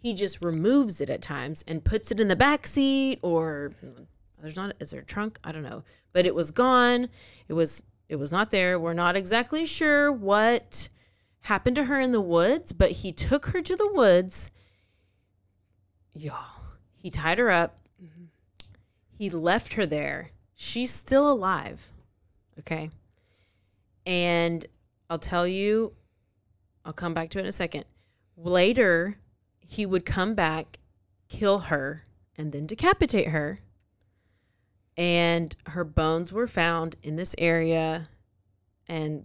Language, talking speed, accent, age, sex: English, 150 wpm, American, 30-49, female